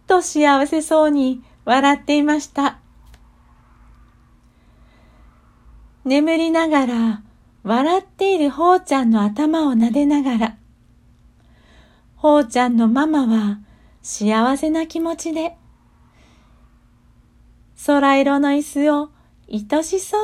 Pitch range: 245-330 Hz